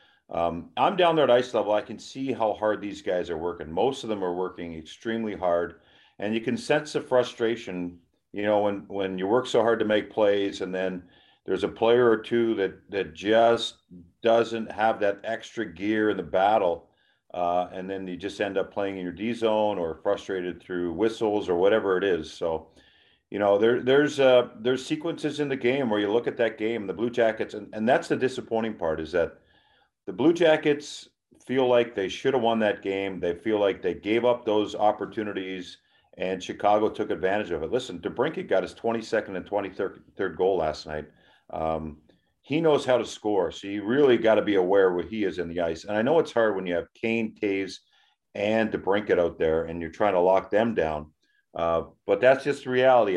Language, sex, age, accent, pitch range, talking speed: English, male, 50-69, American, 90-115 Hz, 210 wpm